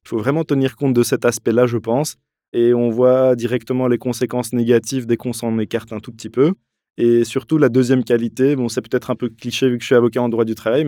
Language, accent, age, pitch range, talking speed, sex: French, French, 20-39, 115-125 Hz, 250 wpm, male